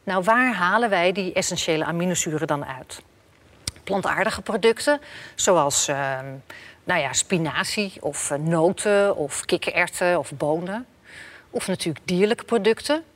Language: Dutch